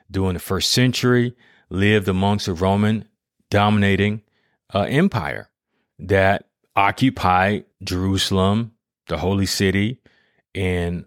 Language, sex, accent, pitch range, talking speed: English, male, American, 95-115 Hz, 85 wpm